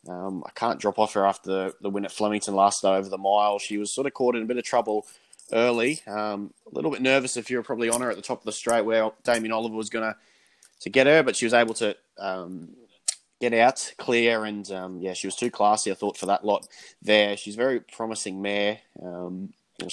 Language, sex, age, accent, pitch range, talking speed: English, male, 20-39, Australian, 95-115 Hz, 245 wpm